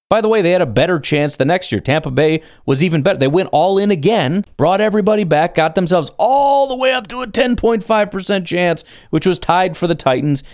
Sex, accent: male, American